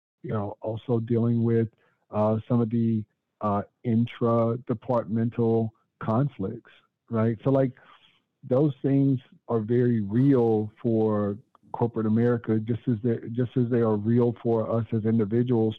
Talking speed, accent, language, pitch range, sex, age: 125 wpm, American, English, 105-115 Hz, male, 50-69